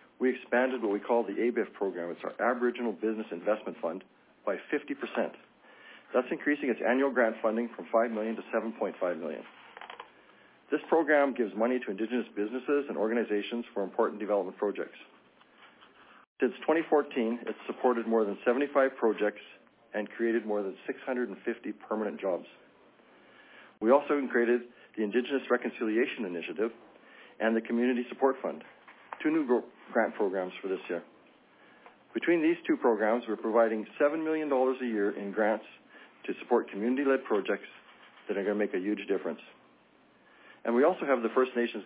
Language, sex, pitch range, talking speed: English, male, 110-135 Hz, 150 wpm